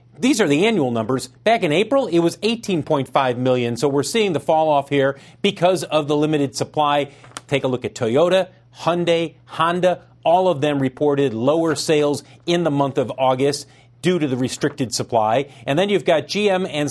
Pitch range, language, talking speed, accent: 130-165 Hz, English, 190 wpm, American